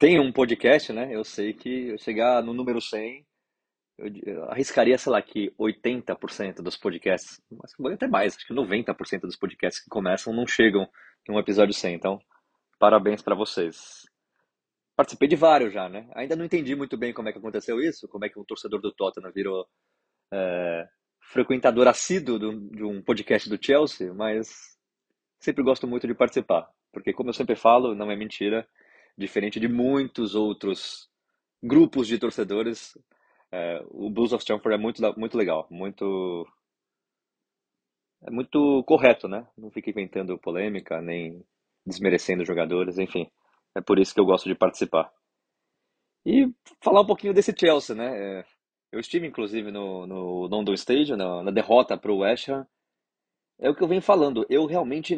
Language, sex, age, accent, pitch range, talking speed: Portuguese, male, 20-39, Brazilian, 95-130 Hz, 165 wpm